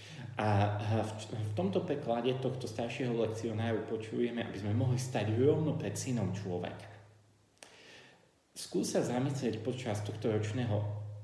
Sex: male